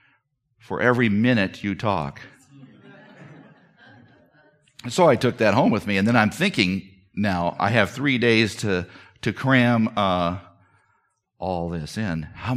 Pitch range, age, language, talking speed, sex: 95-120 Hz, 50-69, English, 145 wpm, male